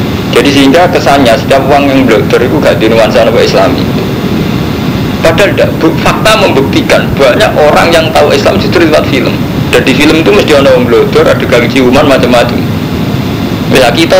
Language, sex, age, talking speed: Indonesian, male, 50-69, 170 wpm